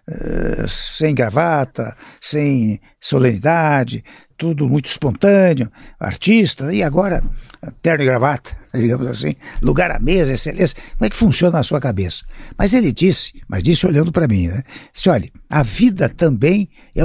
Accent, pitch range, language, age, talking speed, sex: Brazilian, 125-170 Hz, Portuguese, 60-79, 150 wpm, male